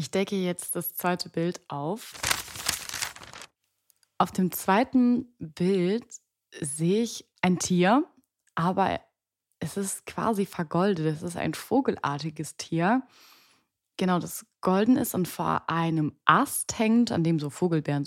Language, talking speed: German, 125 wpm